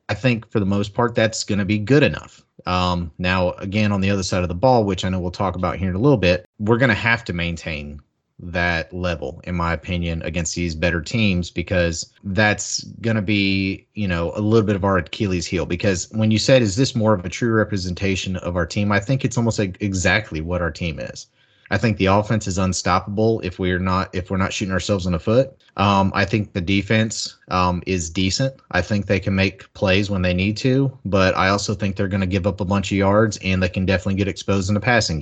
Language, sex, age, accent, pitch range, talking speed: English, male, 30-49, American, 90-105 Hz, 240 wpm